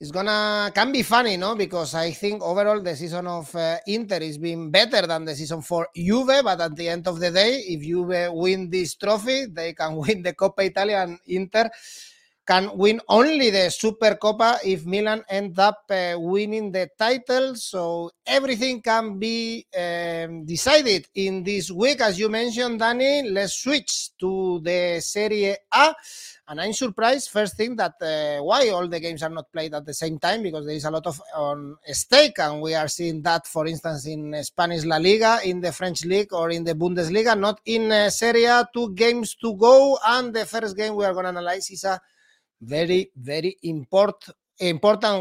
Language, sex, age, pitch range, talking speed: English, male, 30-49, 170-220 Hz, 190 wpm